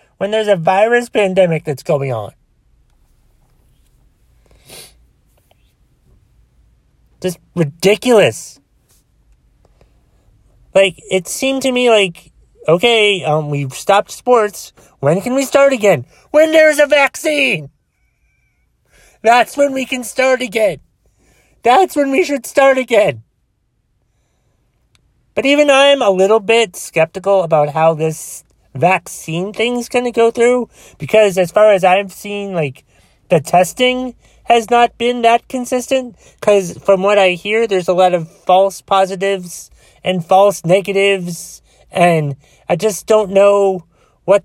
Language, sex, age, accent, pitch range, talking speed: English, male, 30-49, American, 165-225 Hz, 125 wpm